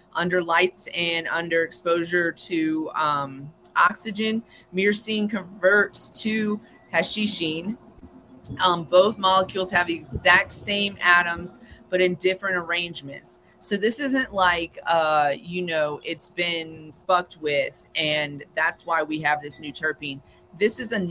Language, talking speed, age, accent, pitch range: English, 130 wpm, 30-49, American, 155-185 Hz